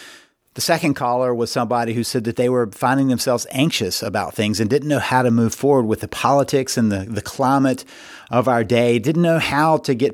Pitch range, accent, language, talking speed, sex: 115-140 Hz, American, English, 220 wpm, male